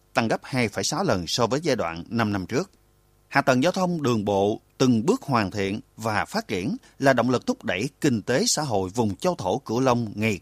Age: 30-49